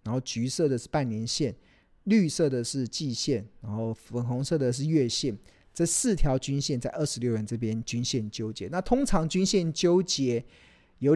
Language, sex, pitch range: Chinese, male, 110-145 Hz